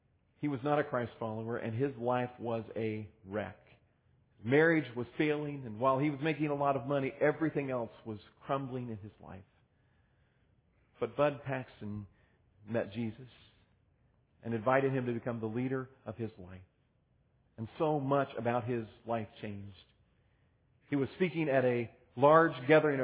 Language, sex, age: English, male, 40-59